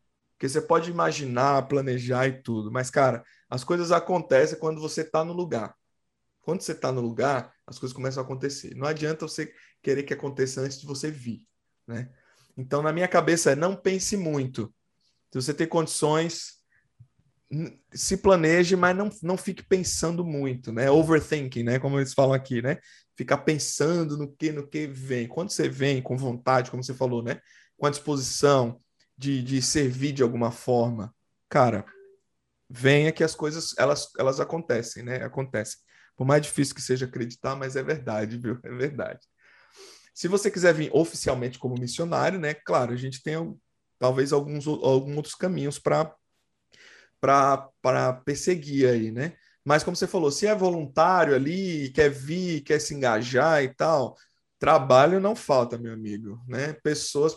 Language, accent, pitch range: Portuguese, Brazilian, 130-160 Hz